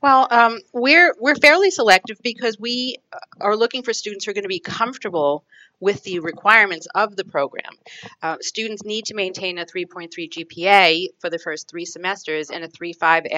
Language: English